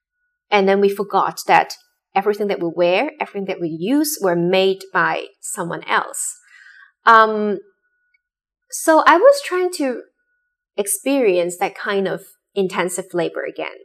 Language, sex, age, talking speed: English, female, 20-39, 135 wpm